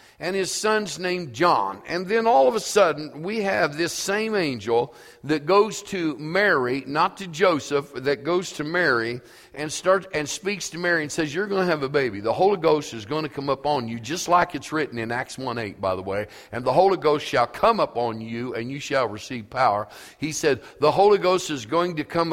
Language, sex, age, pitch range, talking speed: English, male, 50-69, 140-185 Hz, 230 wpm